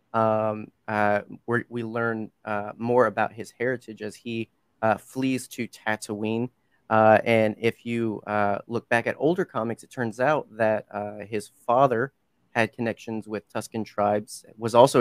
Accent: American